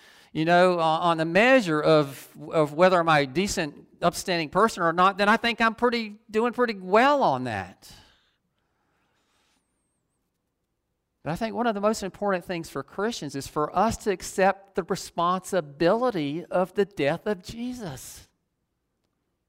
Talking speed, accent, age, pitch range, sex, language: 150 wpm, American, 50-69, 145-225 Hz, male, English